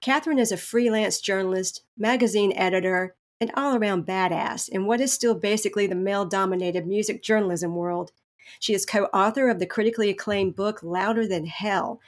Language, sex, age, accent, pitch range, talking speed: English, female, 40-59, American, 185-230 Hz, 155 wpm